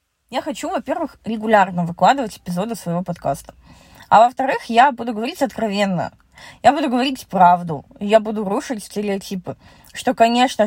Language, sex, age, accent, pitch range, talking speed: Russian, female, 20-39, native, 185-240 Hz, 135 wpm